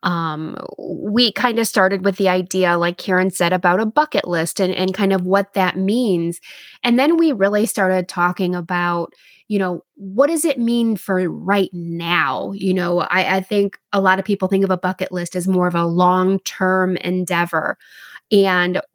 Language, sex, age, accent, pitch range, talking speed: English, female, 20-39, American, 180-220 Hz, 185 wpm